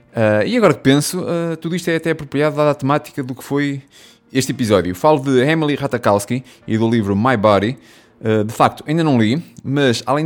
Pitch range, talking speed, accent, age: 105-140 Hz, 210 wpm, Portuguese, 20-39